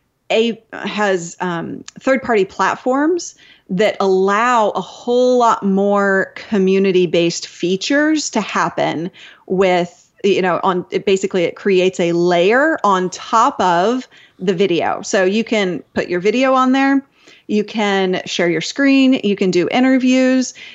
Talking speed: 135 wpm